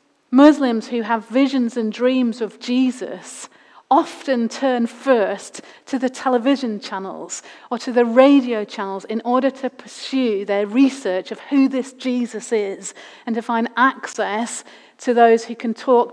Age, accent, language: 40-59, British, English